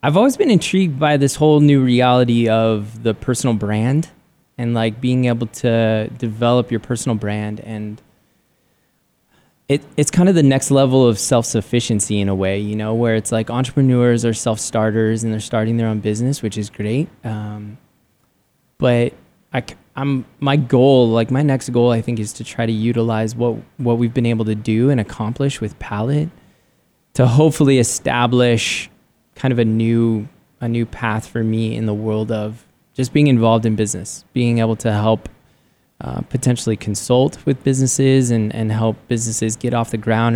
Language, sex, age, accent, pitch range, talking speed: English, male, 20-39, American, 110-125 Hz, 175 wpm